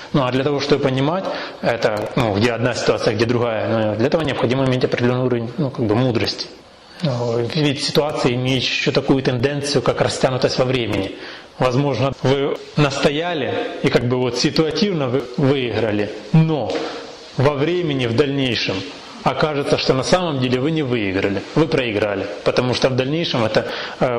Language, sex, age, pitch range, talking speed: Russian, male, 20-39, 120-150 Hz, 165 wpm